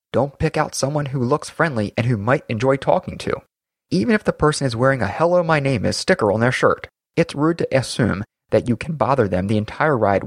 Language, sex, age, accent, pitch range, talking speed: English, male, 30-49, American, 105-150 Hz, 235 wpm